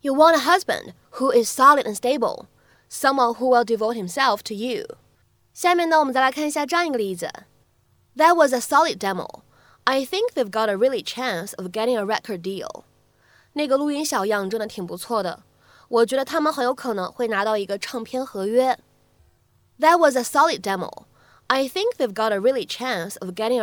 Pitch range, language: 215-310 Hz, Chinese